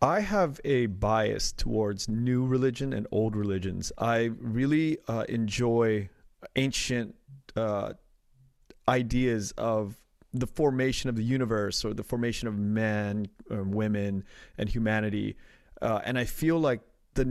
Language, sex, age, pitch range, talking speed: English, male, 30-49, 110-130 Hz, 130 wpm